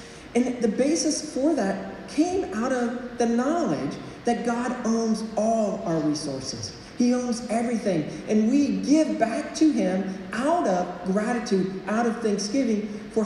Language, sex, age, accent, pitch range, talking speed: English, male, 50-69, American, 155-215 Hz, 145 wpm